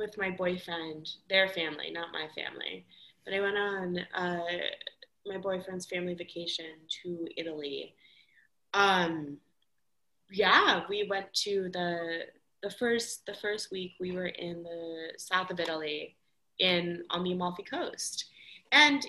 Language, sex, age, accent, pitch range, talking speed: English, female, 20-39, American, 170-205 Hz, 135 wpm